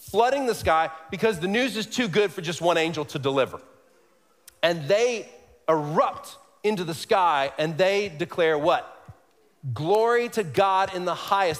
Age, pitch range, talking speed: 40-59, 160-235 Hz, 160 wpm